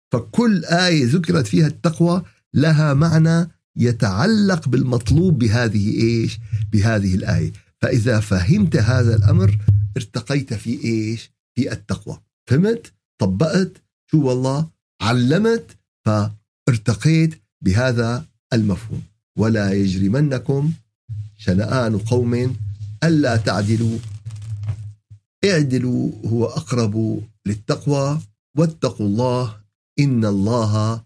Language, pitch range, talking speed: Arabic, 105-145 Hz, 85 wpm